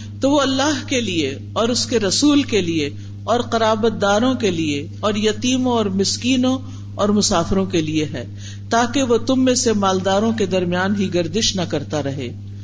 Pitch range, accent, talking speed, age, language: 150-235 Hz, Indian, 175 wpm, 50-69, English